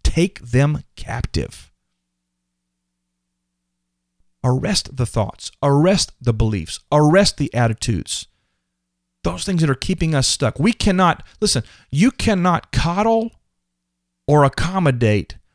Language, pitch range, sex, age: English, 90-145 Hz, male, 40-59